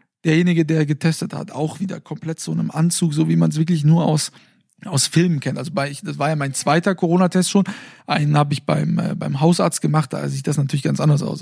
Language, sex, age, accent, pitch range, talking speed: German, male, 40-59, German, 160-200 Hz, 235 wpm